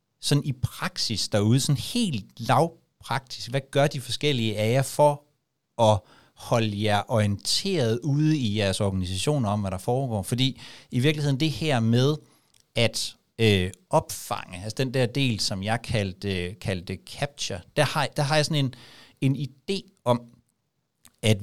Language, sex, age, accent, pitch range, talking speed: Danish, male, 60-79, native, 100-135 Hz, 150 wpm